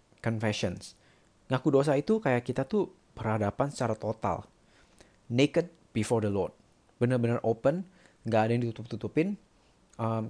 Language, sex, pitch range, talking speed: Indonesian, male, 100-130 Hz, 120 wpm